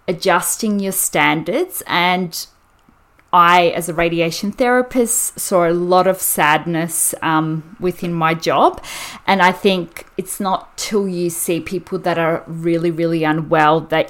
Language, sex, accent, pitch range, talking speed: English, female, Australian, 160-185 Hz, 140 wpm